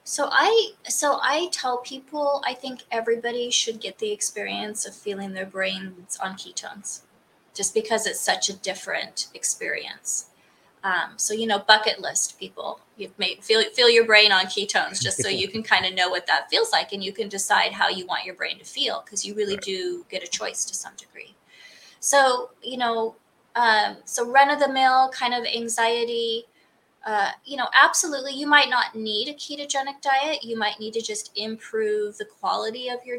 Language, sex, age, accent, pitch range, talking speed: English, female, 20-39, American, 210-270 Hz, 190 wpm